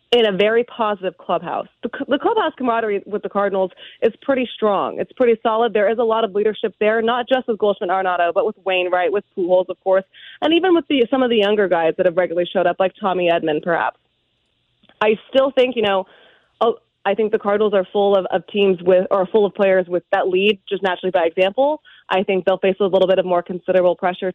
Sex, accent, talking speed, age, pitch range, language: female, American, 220 wpm, 20-39, 185-230 Hz, English